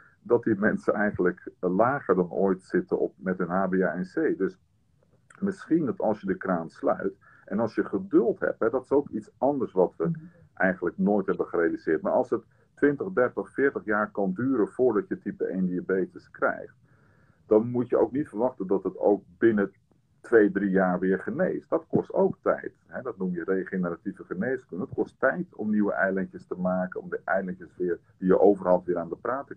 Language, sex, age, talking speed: Dutch, male, 50-69, 195 wpm